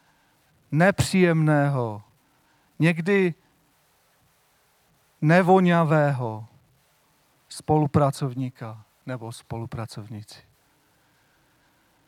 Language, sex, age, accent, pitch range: Czech, male, 40-59, native, 140-170 Hz